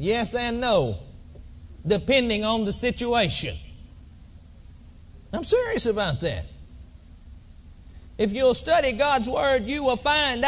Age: 40-59